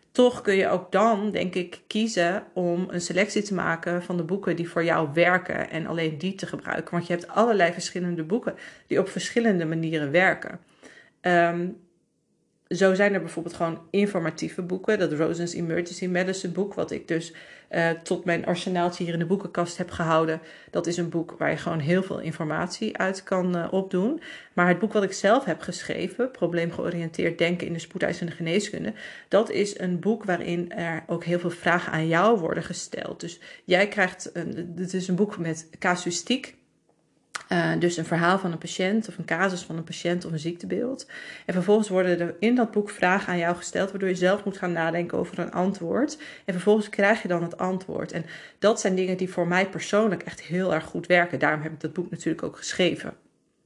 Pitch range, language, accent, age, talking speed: 170-195 Hz, Dutch, Dutch, 40-59, 195 wpm